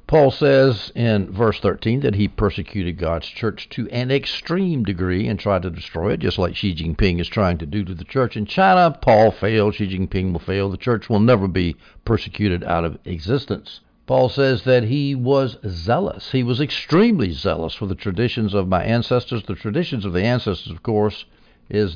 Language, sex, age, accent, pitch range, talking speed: English, male, 60-79, American, 100-125 Hz, 195 wpm